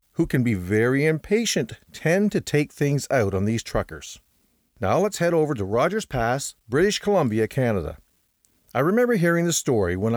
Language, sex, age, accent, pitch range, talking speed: English, male, 40-59, American, 110-165 Hz, 170 wpm